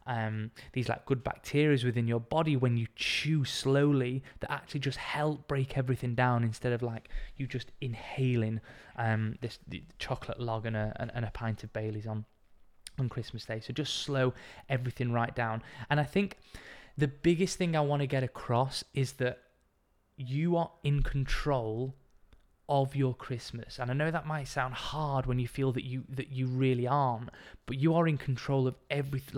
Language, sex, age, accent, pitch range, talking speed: English, male, 20-39, British, 120-135 Hz, 185 wpm